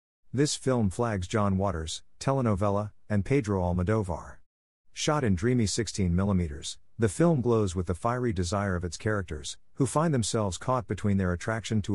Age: 50-69